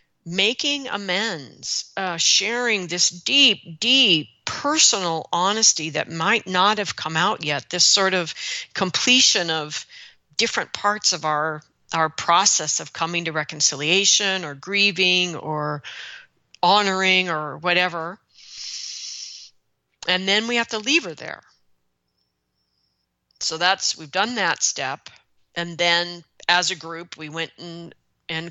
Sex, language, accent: female, English, American